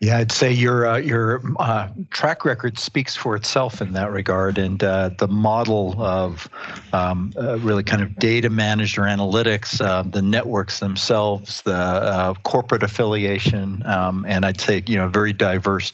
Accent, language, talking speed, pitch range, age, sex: American, English, 170 wpm, 100-120 Hz, 50-69, male